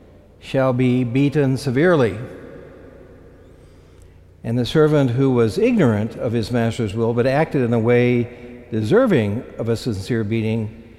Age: 60-79